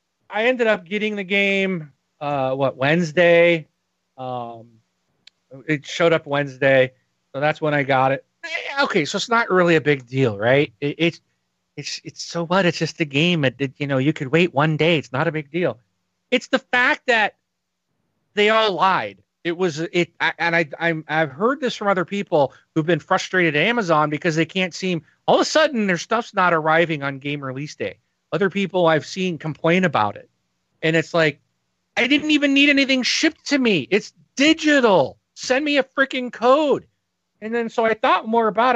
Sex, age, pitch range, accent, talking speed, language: male, 40-59, 150-205 Hz, American, 195 wpm, English